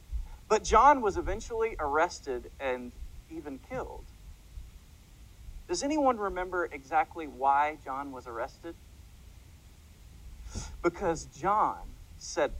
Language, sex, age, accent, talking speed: English, male, 40-59, American, 90 wpm